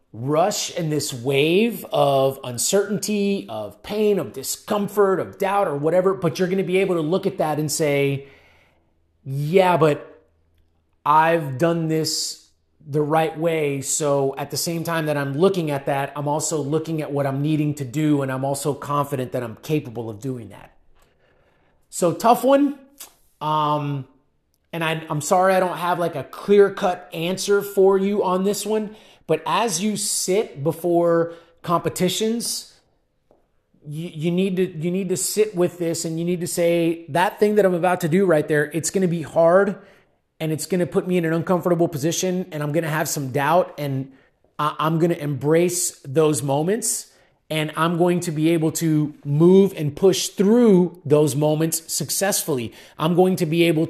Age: 30-49